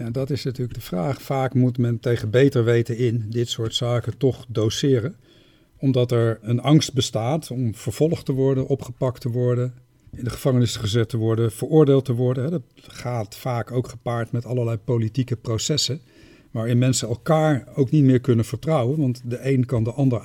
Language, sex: Dutch, male